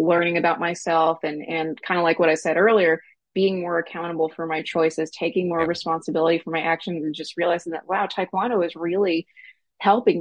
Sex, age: female, 20-39